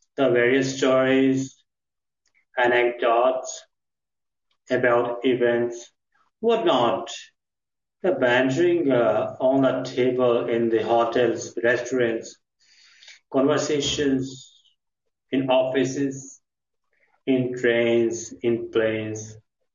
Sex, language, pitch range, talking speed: male, English, 115-135 Hz, 75 wpm